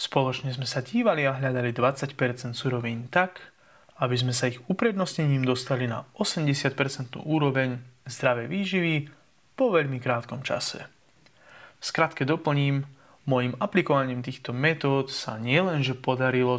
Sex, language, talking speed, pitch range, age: male, Slovak, 120 wpm, 125-150 Hz, 20-39